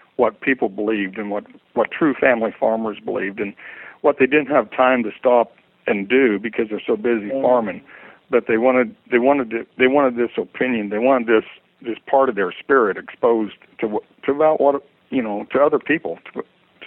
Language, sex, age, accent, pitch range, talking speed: English, male, 60-79, American, 110-135 Hz, 190 wpm